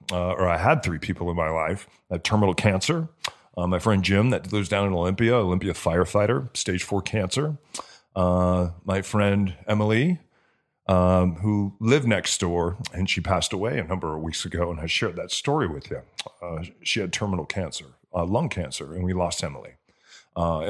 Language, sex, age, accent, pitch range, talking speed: English, male, 40-59, American, 90-115 Hz, 190 wpm